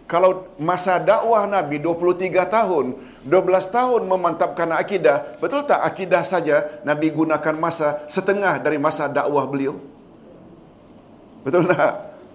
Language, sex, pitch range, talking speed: Malayalam, male, 150-185 Hz, 110 wpm